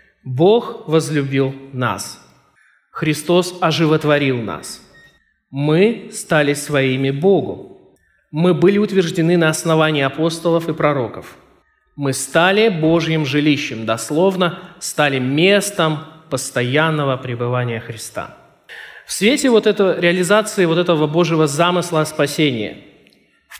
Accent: native